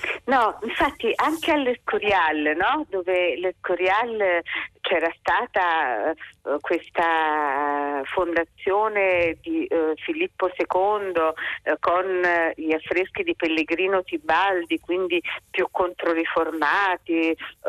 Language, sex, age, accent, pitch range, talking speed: Italian, female, 40-59, native, 165-205 Hz, 80 wpm